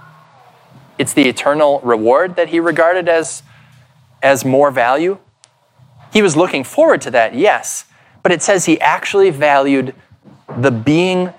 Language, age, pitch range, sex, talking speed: English, 20-39, 125-160 Hz, male, 135 wpm